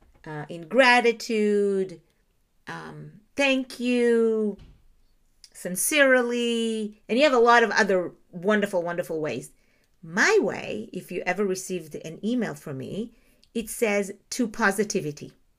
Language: English